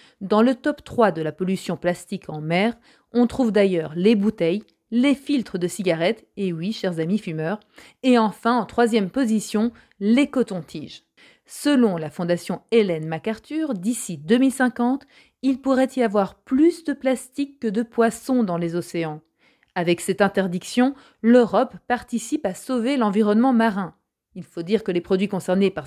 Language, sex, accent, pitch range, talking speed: French, female, French, 190-255 Hz, 160 wpm